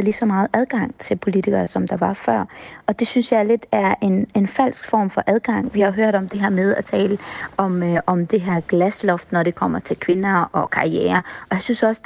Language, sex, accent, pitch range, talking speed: Danish, female, native, 180-220 Hz, 245 wpm